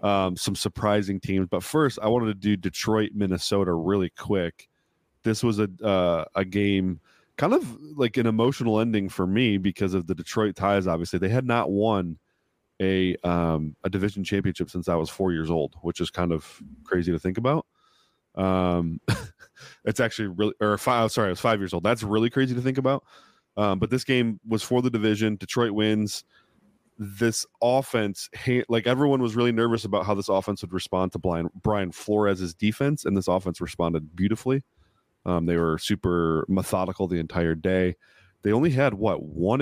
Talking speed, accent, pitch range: 180 wpm, American, 90-115 Hz